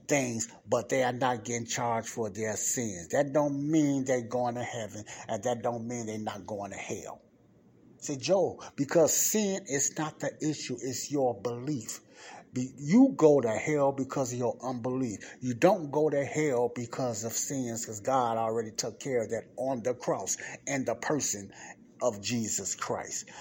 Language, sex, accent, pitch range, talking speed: English, male, American, 115-145 Hz, 175 wpm